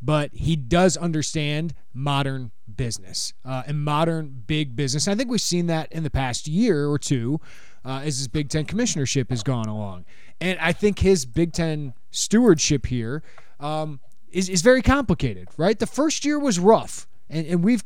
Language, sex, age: English, male, 20-39